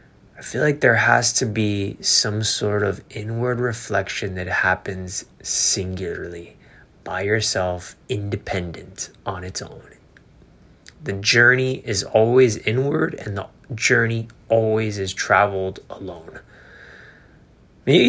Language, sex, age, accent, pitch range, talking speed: English, male, 20-39, American, 95-110 Hz, 115 wpm